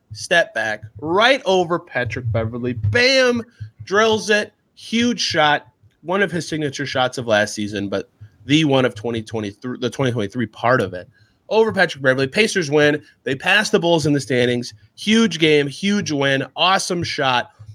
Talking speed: 160 wpm